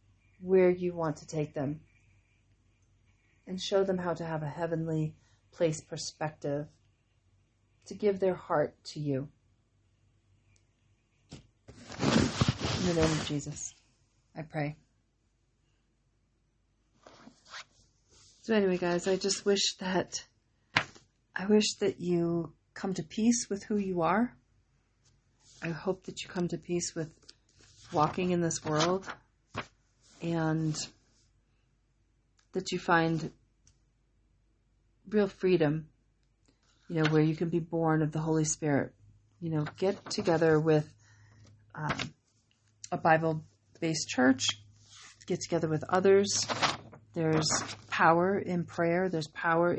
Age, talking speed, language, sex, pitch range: 40-59, 115 wpm, English, female, 110-175 Hz